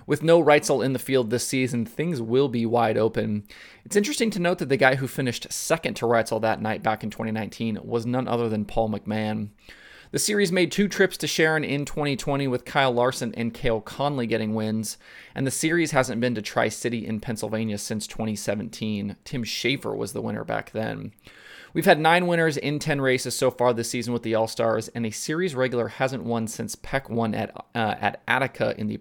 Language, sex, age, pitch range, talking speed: English, male, 20-39, 110-140 Hz, 205 wpm